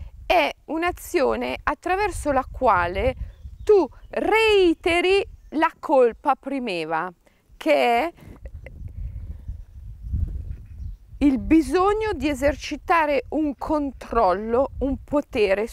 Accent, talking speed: native, 75 wpm